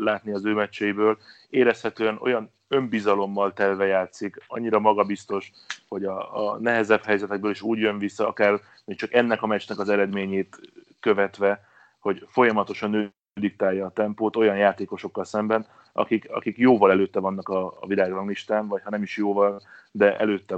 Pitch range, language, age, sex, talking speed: 95-110 Hz, Hungarian, 30-49, male, 155 wpm